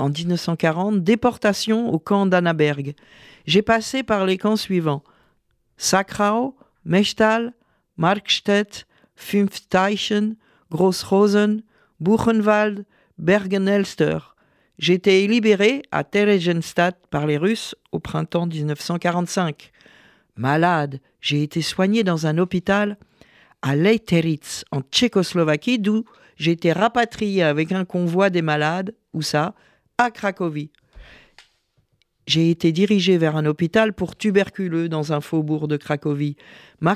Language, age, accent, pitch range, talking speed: French, 50-69, French, 165-220 Hz, 110 wpm